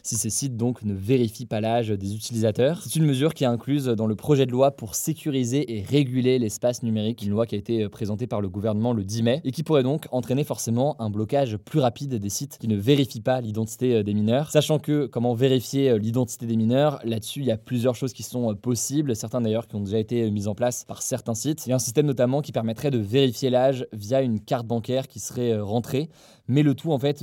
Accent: French